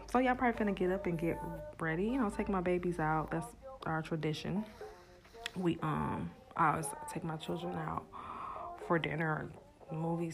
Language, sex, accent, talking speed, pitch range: English, female, American, 180 wpm, 165-220 Hz